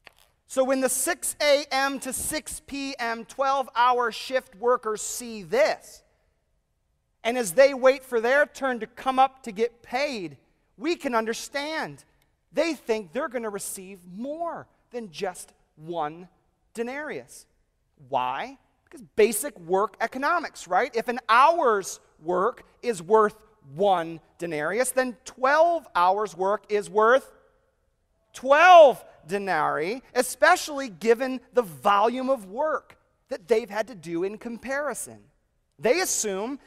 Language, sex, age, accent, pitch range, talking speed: English, male, 40-59, American, 185-265 Hz, 125 wpm